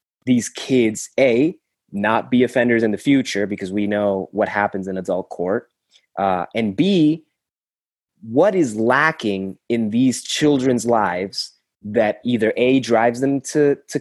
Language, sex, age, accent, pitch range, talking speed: English, male, 20-39, American, 105-140 Hz, 145 wpm